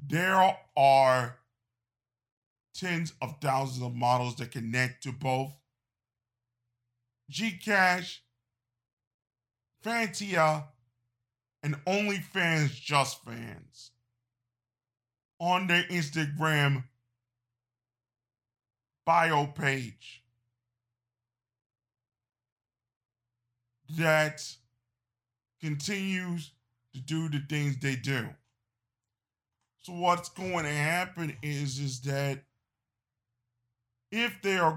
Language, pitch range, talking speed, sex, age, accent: English, 120-170 Hz, 70 wpm, male, 40-59, American